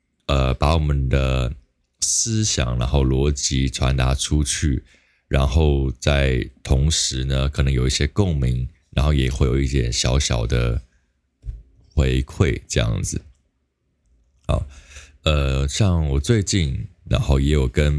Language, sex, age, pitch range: Chinese, male, 20-39, 65-80 Hz